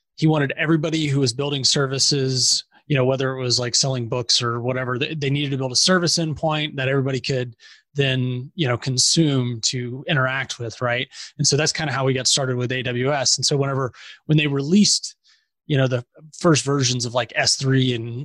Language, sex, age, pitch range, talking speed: English, male, 20-39, 130-155 Hz, 200 wpm